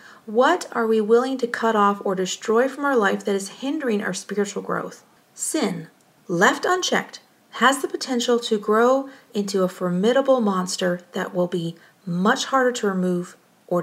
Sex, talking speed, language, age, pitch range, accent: female, 165 wpm, English, 40-59, 195-245 Hz, American